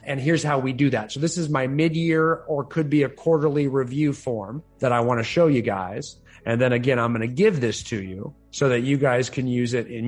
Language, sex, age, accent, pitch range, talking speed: English, male, 30-49, American, 110-140 Hz, 255 wpm